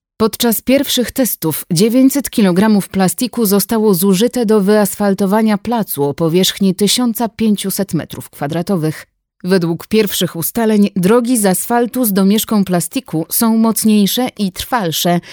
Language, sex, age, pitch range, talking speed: Polish, female, 30-49, 175-230 Hz, 110 wpm